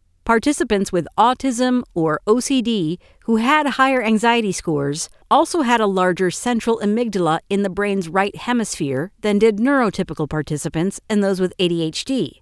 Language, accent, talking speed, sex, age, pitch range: English, American, 140 wpm, female, 50-69, 160-230 Hz